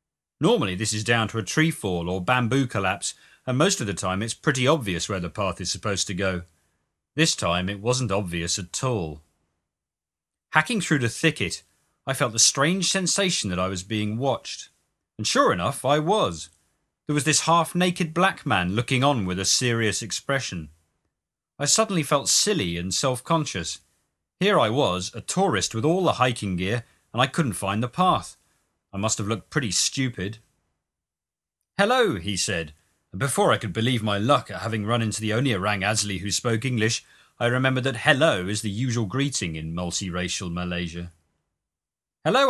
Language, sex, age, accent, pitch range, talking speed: English, male, 40-59, British, 90-130 Hz, 175 wpm